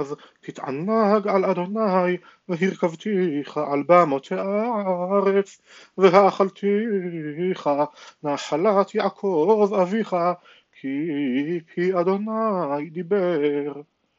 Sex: male